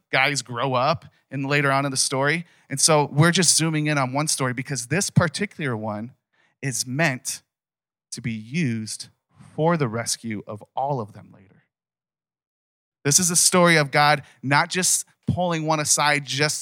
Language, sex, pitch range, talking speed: English, male, 125-155 Hz, 165 wpm